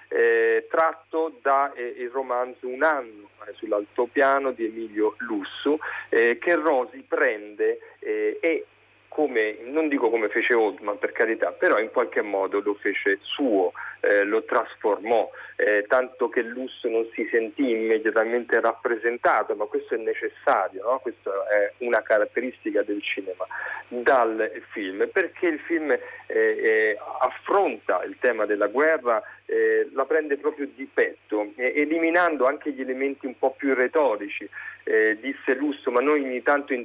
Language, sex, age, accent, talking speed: Italian, male, 40-59, native, 145 wpm